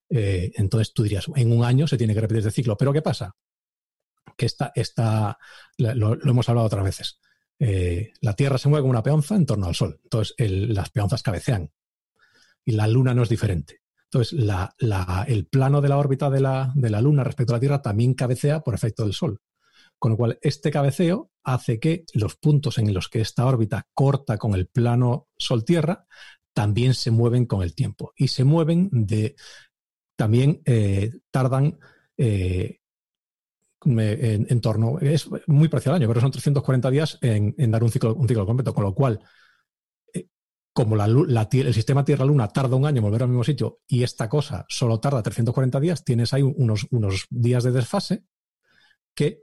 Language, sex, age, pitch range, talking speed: Spanish, male, 40-59, 115-140 Hz, 185 wpm